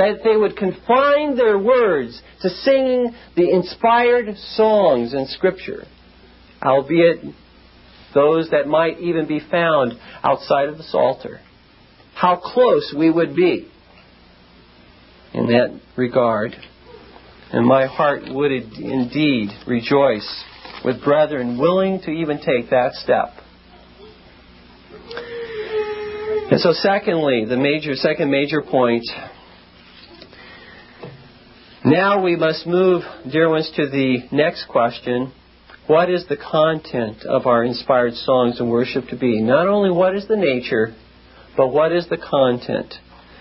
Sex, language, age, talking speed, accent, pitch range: male, English, 50-69, 120 wpm, American, 125-200 Hz